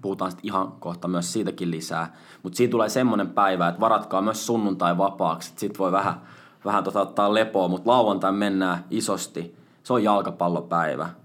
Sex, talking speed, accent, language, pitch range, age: male, 165 wpm, native, Finnish, 90-115 Hz, 20-39